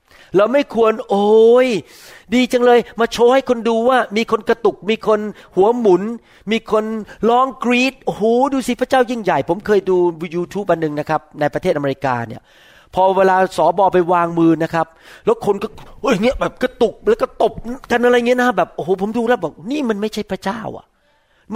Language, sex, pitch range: Thai, male, 180-245 Hz